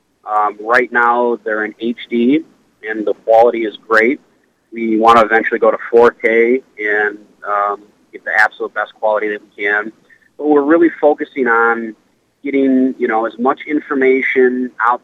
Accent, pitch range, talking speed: American, 110-130 Hz, 160 wpm